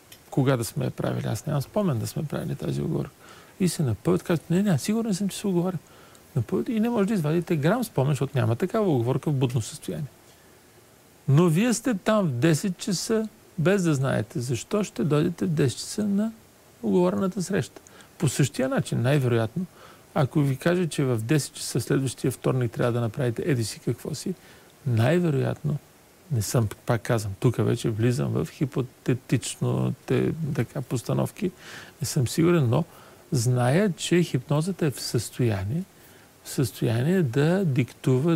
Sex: male